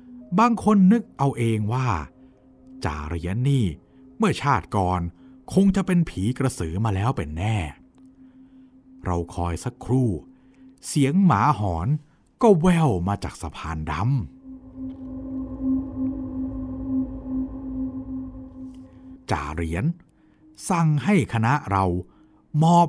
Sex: male